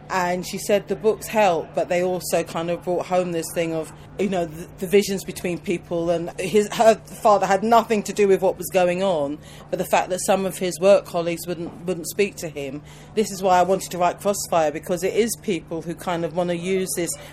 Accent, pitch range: British, 170-195 Hz